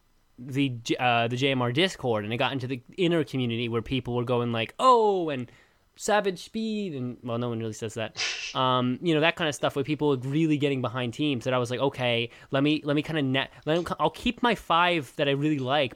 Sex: male